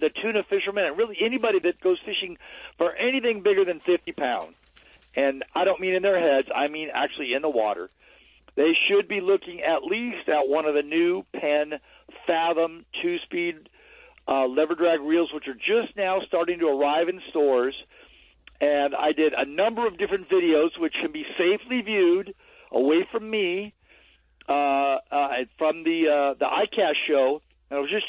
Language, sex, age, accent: English, male, 50-69, American